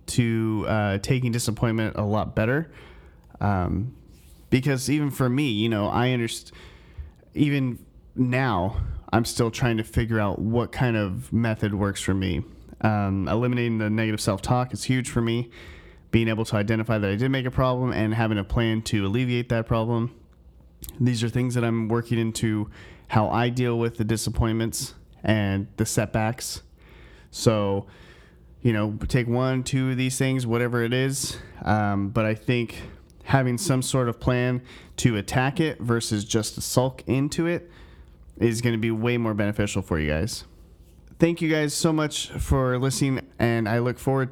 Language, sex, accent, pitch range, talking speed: English, male, American, 105-130 Hz, 170 wpm